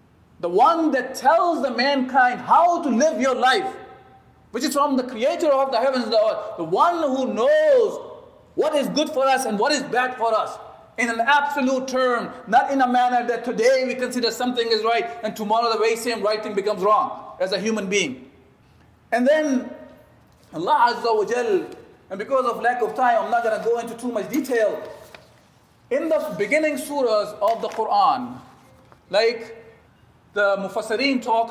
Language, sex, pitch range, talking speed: English, male, 215-290 Hz, 185 wpm